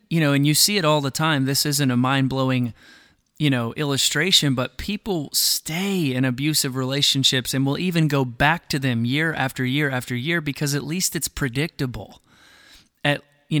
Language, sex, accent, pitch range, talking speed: English, male, American, 130-160 Hz, 180 wpm